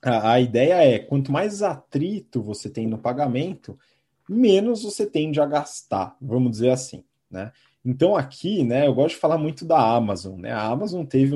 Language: Portuguese